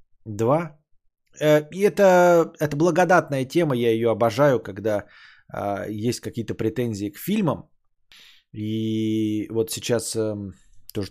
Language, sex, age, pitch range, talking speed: Bulgarian, male, 20-39, 110-155 Hz, 105 wpm